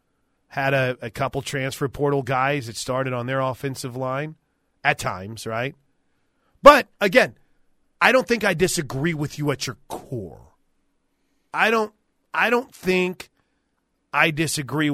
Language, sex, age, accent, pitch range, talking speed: English, male, 40-59, American, 140-185 Hz, 135 wpm